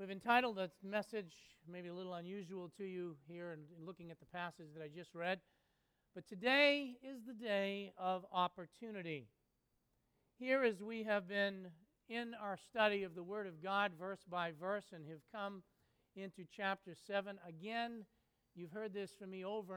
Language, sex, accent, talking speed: English, male, American, 170 wpm